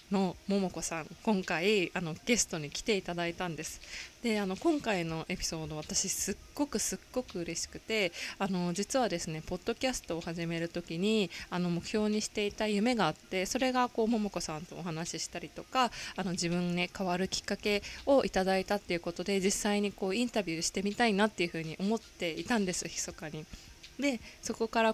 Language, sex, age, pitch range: Japanese, female, 20-39, 170-215 Hz